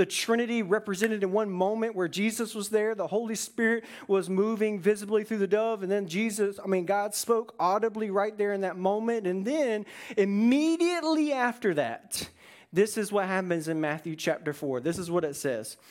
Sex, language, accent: male, English, American